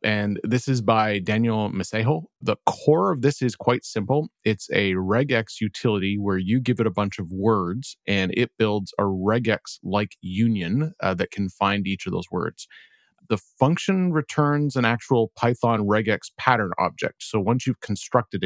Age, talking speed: 30-49, 170 wpm